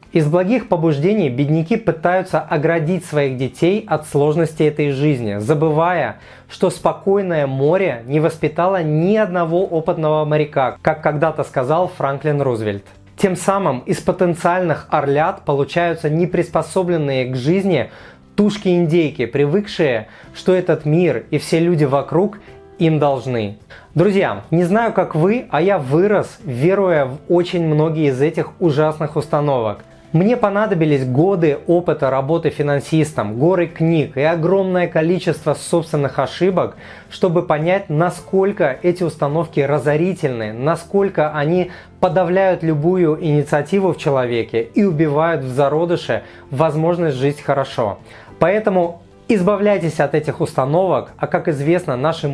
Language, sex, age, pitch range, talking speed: Russian, male, 20-39, 145-180 Hz, 120 wpm